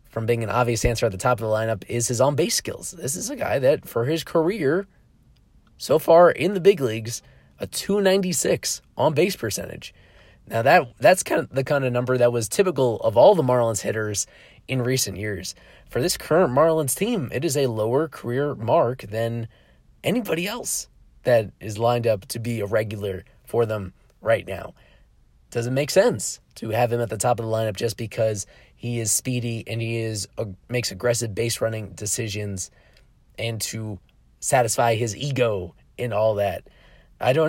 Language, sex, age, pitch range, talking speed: English, male, 20-39, 110-130 Hz, 185 wpm